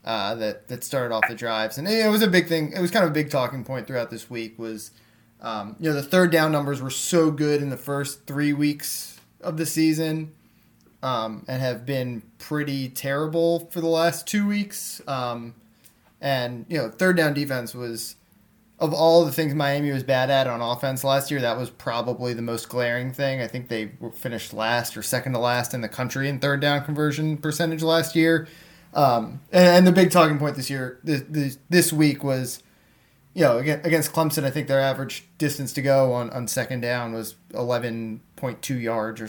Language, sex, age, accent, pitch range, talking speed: English, male, 20-39, American, 120-165 Hz, 205 wpm